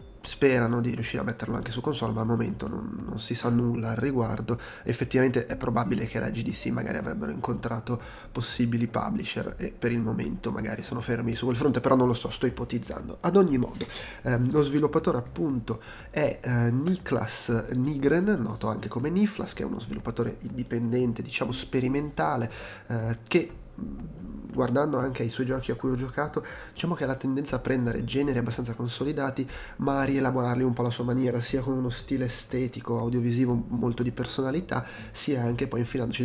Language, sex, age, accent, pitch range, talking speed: Italian, male, 30-49, native, 115-135 Hz, 180 wpm